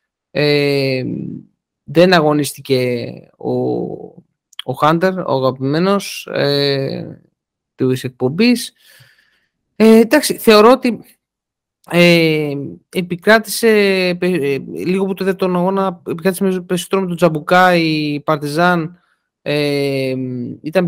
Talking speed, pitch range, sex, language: 90 wpm, 145-190 Hz, male, Greek